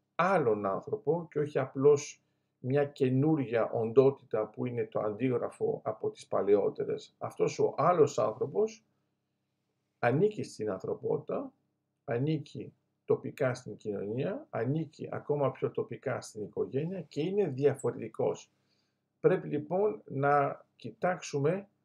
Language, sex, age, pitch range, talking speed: Greek, male, 50-69, 140-190 Hz, 105 wpm